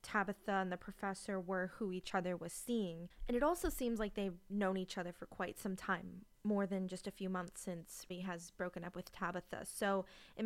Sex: female